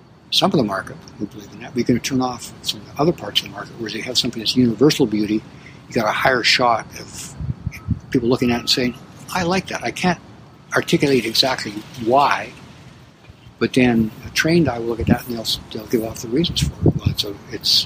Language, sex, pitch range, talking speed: English, male, 110-140 Hz, 235 wpm